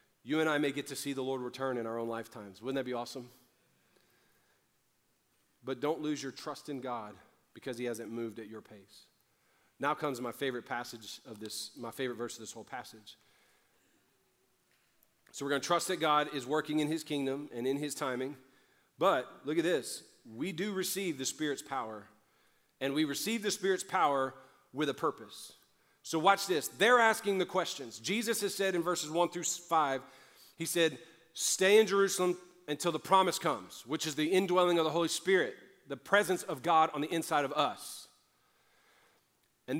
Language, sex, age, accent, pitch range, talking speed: English, male, 40-59, American, 135-180 Hz, 185 wpm